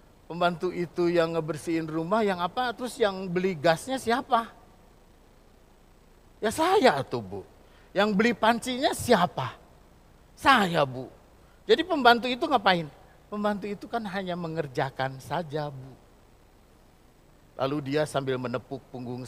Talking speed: 120 wpm